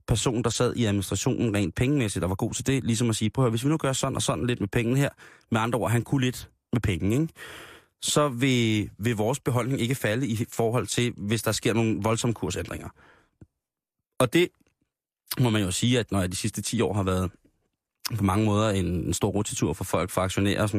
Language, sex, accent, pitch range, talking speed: Danish, male, native, 100-135 Hz, 235 wpm